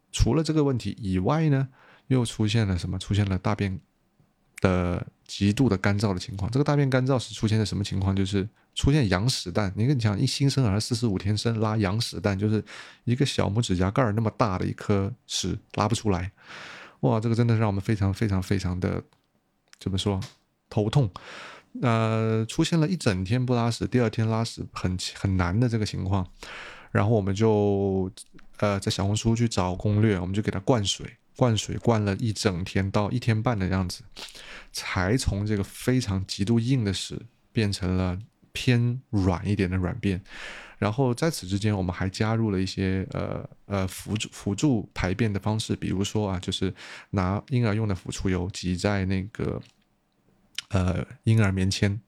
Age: 30-49